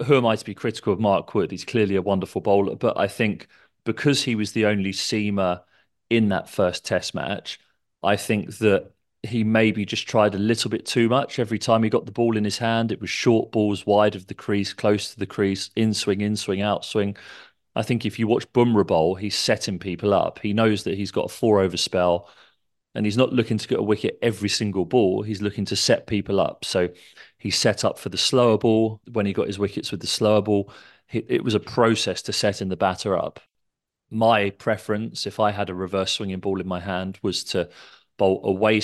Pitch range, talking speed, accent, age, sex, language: 95-110 Hz, 220 wpm, British, 30-49, male, English